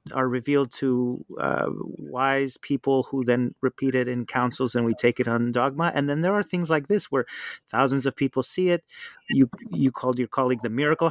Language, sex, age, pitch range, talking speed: English, male, 30-49, 125-145 Hz, 205 wpm